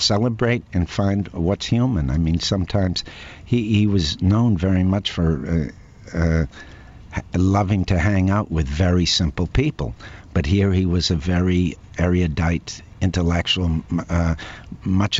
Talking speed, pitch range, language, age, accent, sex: 140 wpm, 80-100 Hz, English, 60-79, American, male